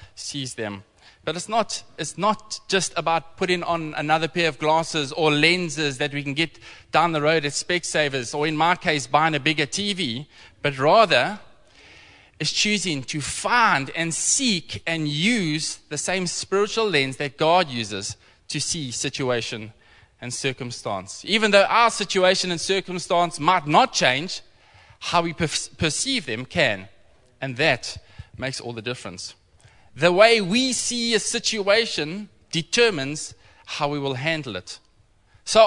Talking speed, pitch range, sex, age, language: 150 wpm, 135-190 Hz, male, 20-39, English